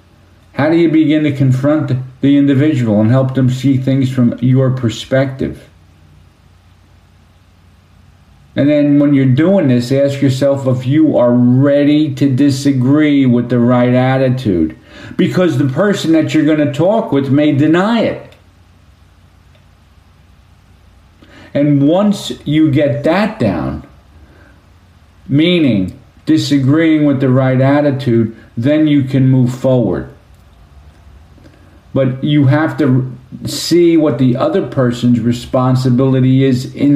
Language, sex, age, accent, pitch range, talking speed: English, male, 50-69, American, 90-140 Hz, 120 wpm